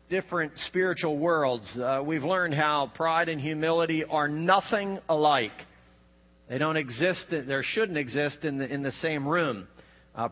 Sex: male